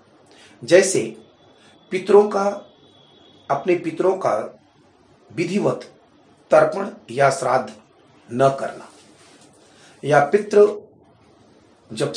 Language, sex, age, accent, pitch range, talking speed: Hindi, male, 40-59, native, 135-185 Hz, 75 wpm